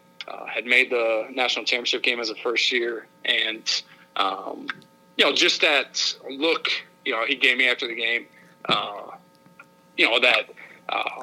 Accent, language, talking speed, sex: American, English, 160 wpm, male